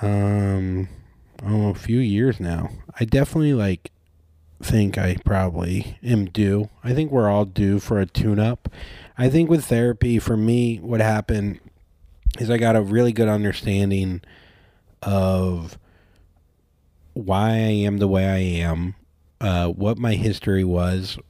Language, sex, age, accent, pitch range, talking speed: English, male, 30-49, American, 90-110 Hz, 145 wpm